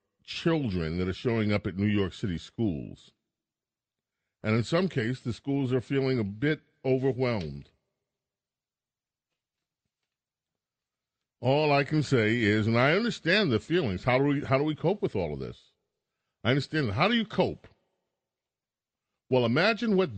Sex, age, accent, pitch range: male, 40-59, American, 100-135 Hz